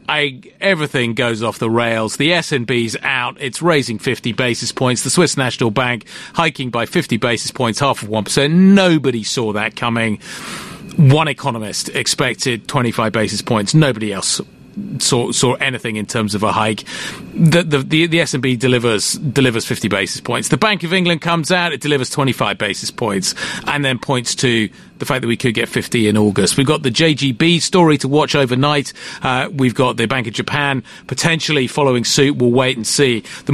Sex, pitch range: male, 120-150 Hz